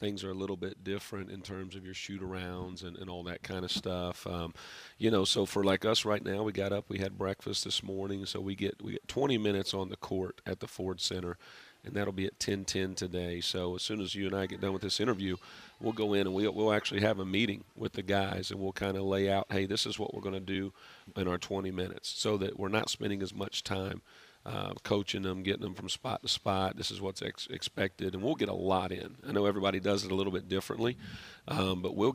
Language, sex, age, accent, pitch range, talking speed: English, male, 40-59, American, 95-100 Hz, 260 wpm